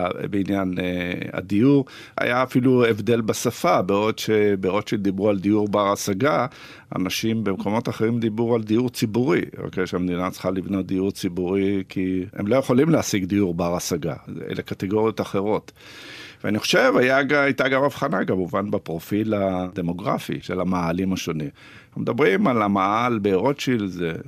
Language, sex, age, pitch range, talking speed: Hebrew, male, 50-69, 95-120 Hz, 135 wpm